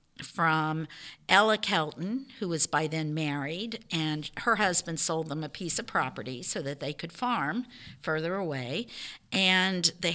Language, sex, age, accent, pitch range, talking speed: English, female, 50-69, American, 140-180 Hz, 155 wpm